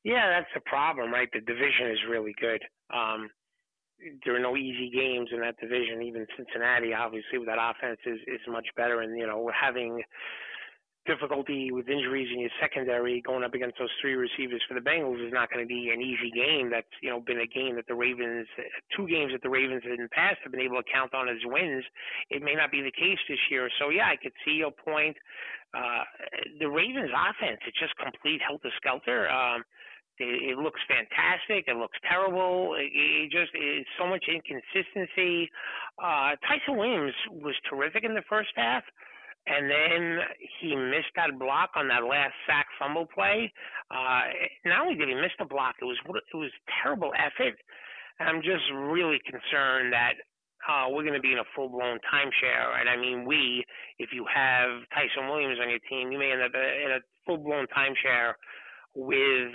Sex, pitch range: male, 120-150 Hz